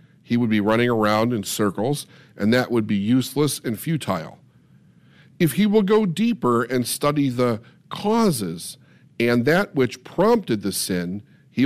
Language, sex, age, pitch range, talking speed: English, male, 50-69, 110-150 Hz, 155 wpm